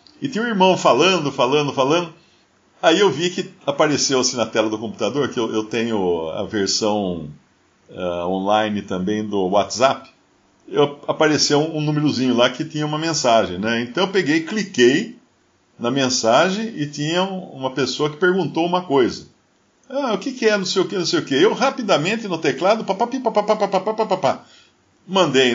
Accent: Brazilian